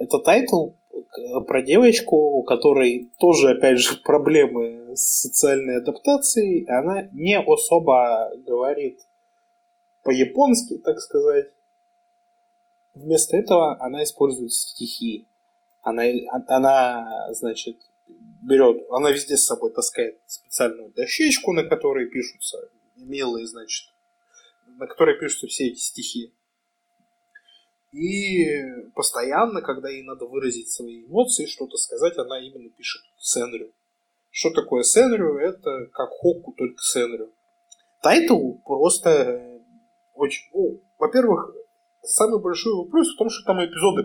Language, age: Russian, 20-39